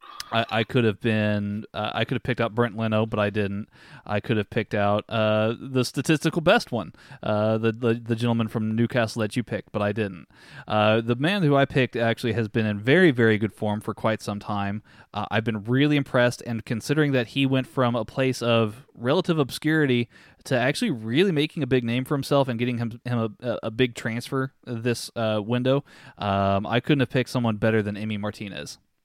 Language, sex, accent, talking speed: English, male, American, 215 wpm